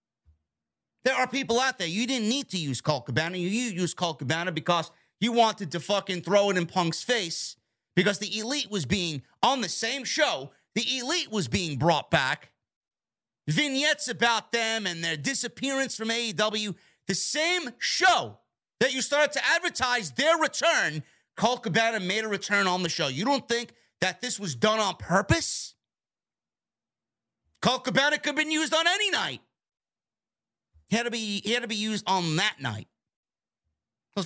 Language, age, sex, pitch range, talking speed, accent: English, 30-49, male, 170-235 Hz, 165 wpm, American